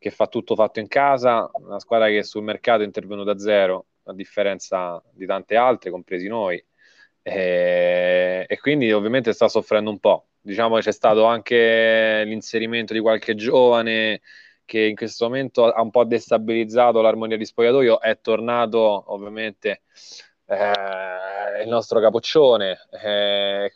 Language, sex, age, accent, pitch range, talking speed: Italian, male, 20-39, native, 100-115 Hz, 145 wpm